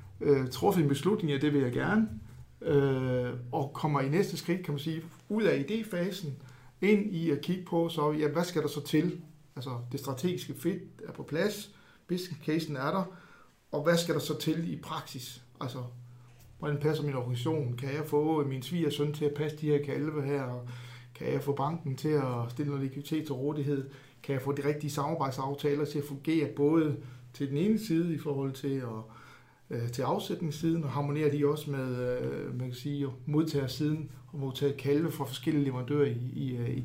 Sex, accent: male, native